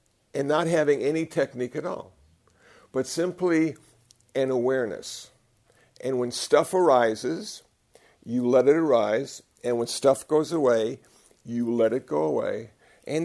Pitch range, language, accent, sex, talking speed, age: 120-155 Hz, English, American, male, 135 wpm, 60-79